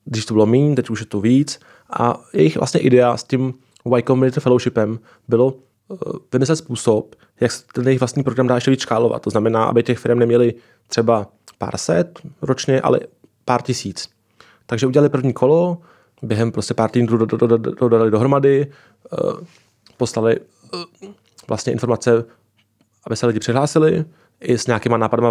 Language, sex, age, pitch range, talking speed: Czech, male, 20-39, 110-125 Hz, 150 wpm